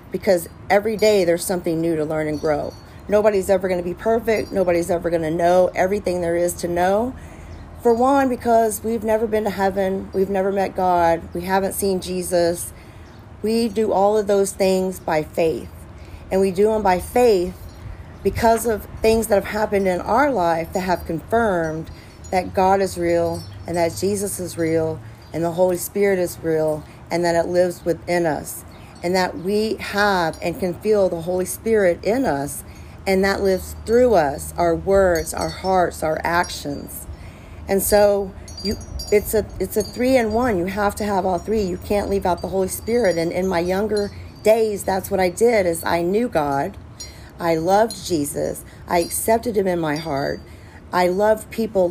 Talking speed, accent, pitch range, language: 185 wpm, American, 165-200 Hz, English